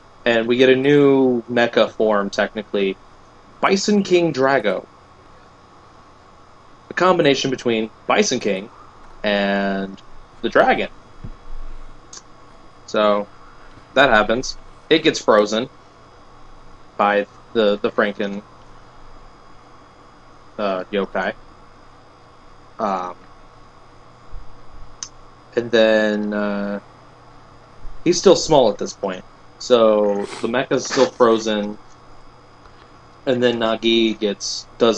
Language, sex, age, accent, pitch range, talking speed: English, male, 30-49, American, 100-125 Hz, 85 wpm